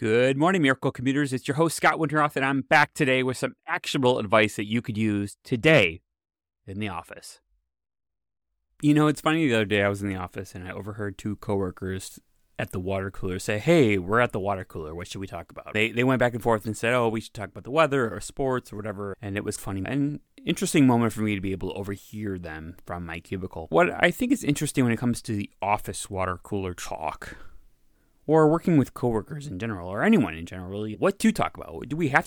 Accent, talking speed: American, 235 wpm